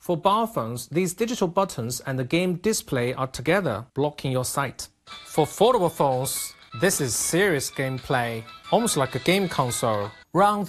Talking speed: 155 wpm